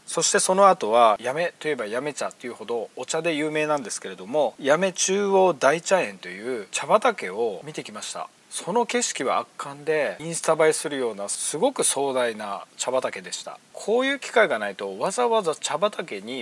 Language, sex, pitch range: Japanese, male, 140-210 Hz